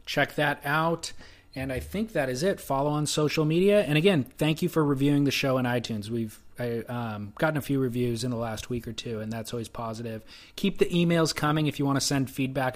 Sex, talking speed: male, 235 wpm